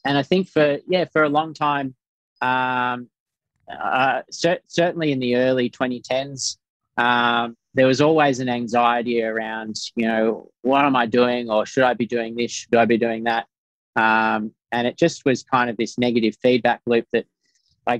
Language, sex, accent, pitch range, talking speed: English, male, Australian, 110-125 Hz, 175 wpm